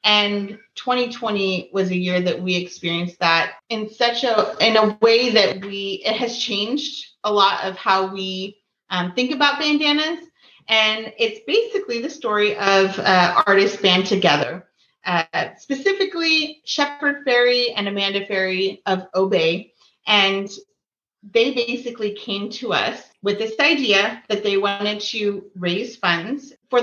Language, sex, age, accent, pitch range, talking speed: English, female, 30-49, American, 185-235 Hz, 145 wpm